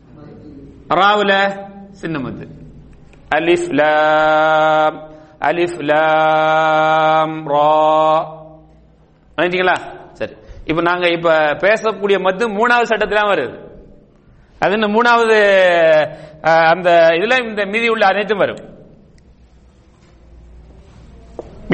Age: 40-59